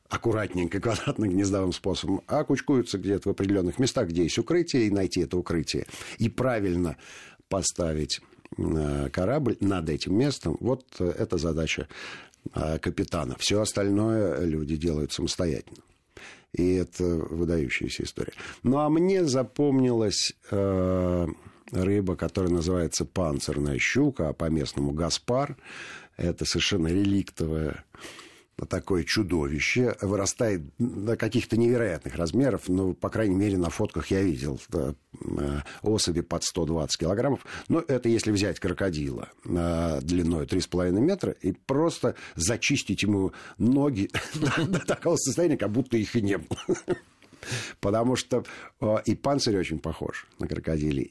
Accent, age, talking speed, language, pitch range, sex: native, 50-69, 125 wpm, Russian, 85-115 Hz, male